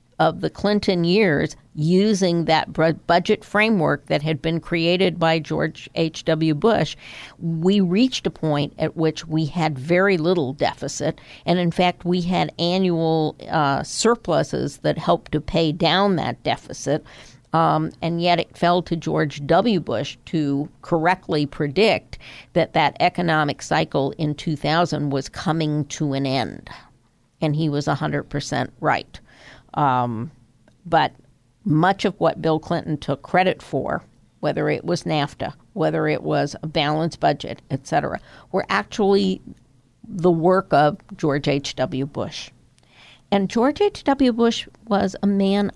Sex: female